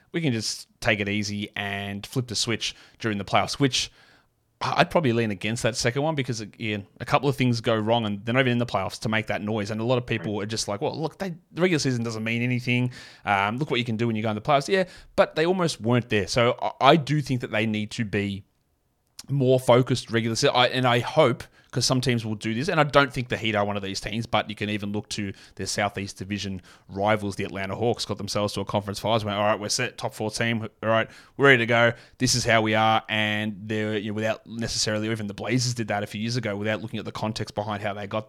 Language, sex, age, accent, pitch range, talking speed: English, male, 20-39, Australian, 105-130 Hz, 260 wpm